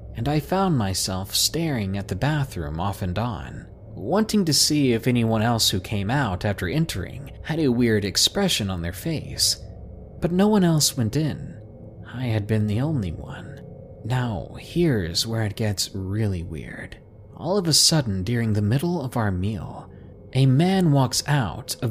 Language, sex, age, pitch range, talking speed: English, male, 20-39, 95-135 Hz, 175 wpm